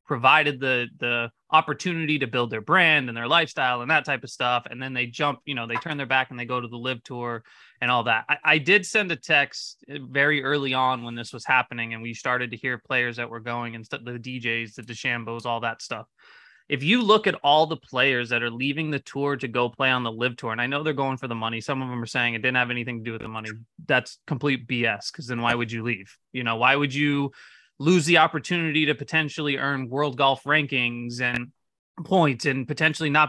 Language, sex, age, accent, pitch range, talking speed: English, male, 20-39, American, 120-150 Hz, 245 wpm